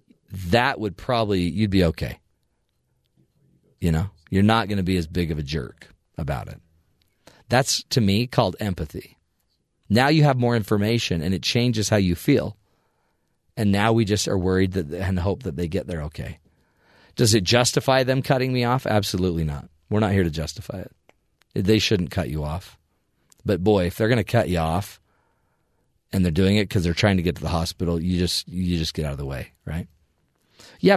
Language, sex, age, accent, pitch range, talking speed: English, male, 40-59, American, 90-120 Hz, 200 wpm